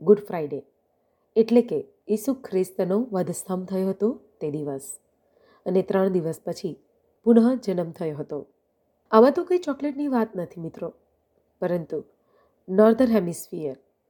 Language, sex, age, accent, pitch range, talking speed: Gujarati, female, 30-49, native, 175-235 Hz, 125 wpm